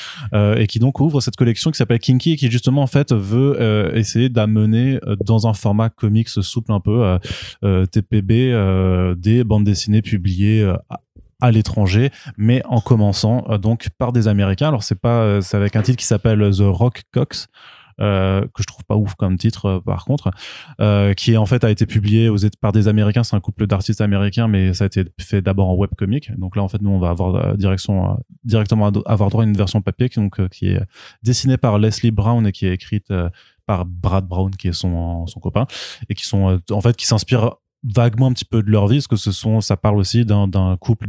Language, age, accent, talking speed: French, 20-39, French, 230 wpm